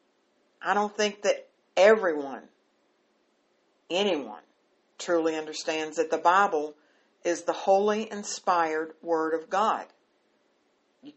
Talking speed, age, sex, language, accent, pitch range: 100 wpm, 60-79, female, English, American, 160-210 Hz